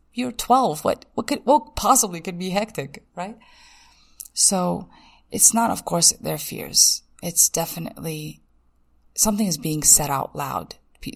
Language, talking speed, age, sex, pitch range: English, 145 wpm, 20-39, female, 155-190 Hz